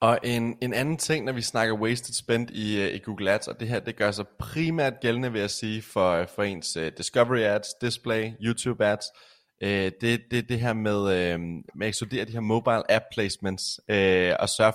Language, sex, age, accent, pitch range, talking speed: Danish, male, 20-39, native, 95-115 Hz, 210 wpm